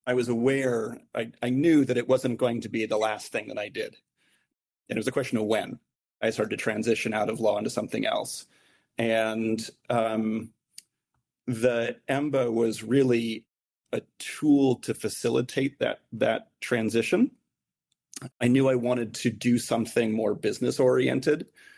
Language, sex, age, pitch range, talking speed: English, male, 30-49, 110-130 Hz, 155 wpm